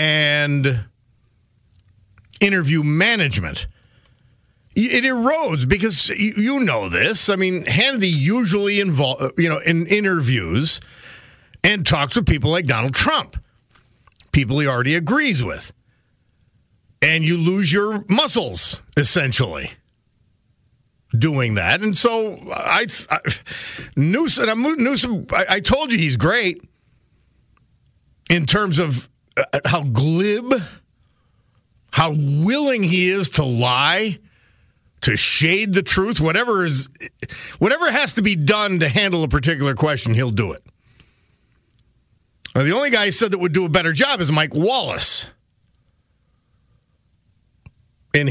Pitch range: 120-190 Hz